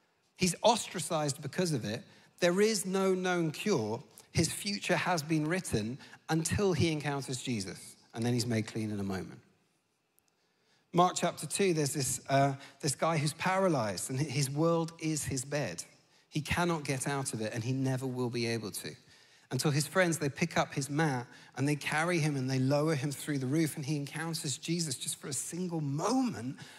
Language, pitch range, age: English, 135-175 Hz, 40-59